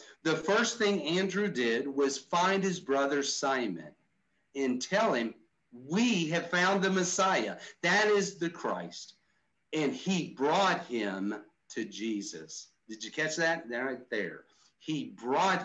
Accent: American